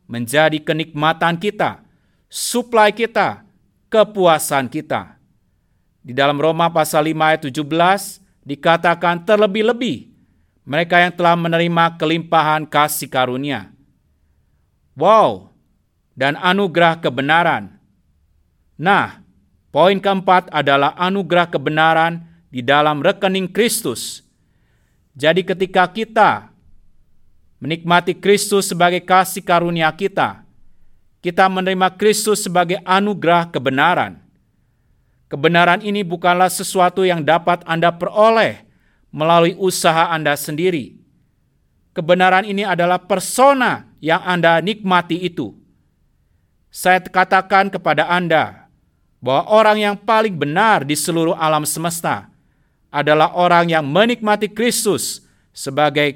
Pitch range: 150-190 Hz